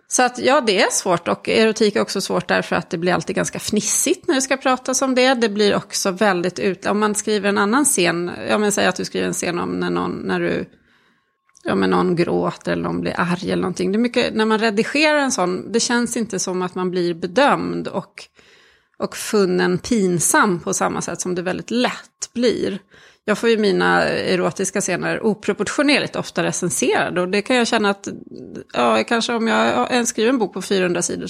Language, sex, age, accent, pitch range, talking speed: Swedish, female, 30-49, native, 185-245 Hz, 215 wpm